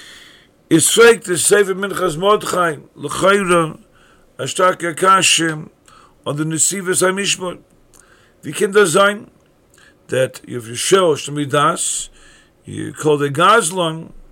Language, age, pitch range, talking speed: English, 50-69, 145-180 Hz, 110 wpm